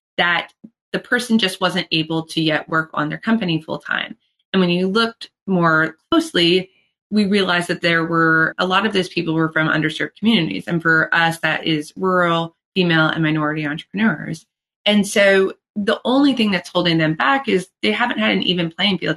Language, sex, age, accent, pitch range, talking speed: English, female, 20-39, American, 155-185 Hz, 190 wpm